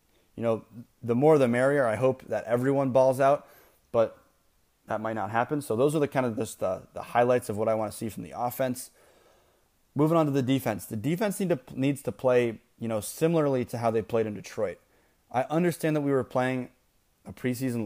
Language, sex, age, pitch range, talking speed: English, male, 20-39, 110-135 Hz, 220 wpm